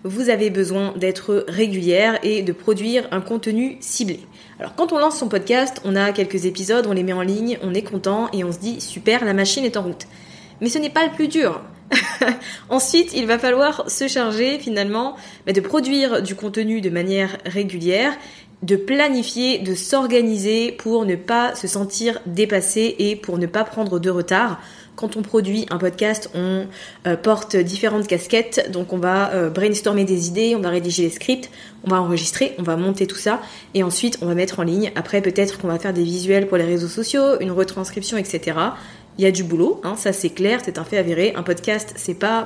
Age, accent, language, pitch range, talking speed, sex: 20-39, French, French, 190-235 Hz, 205 wpm, female